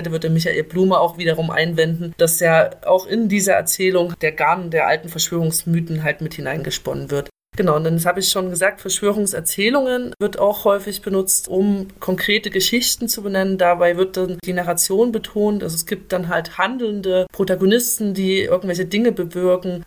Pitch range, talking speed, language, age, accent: 165-195 Hz, 170 wpm, German, 30-49, German